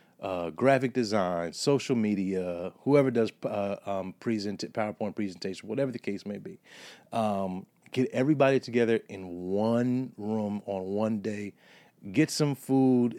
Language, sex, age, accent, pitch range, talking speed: English, male, 30-49, American, 115-155 Hz, 130 wpm